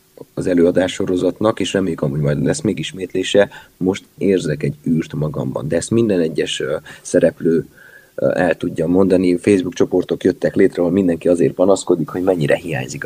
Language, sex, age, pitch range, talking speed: Hungarian, male, 20-39, 90-100 Hz, 155 wpm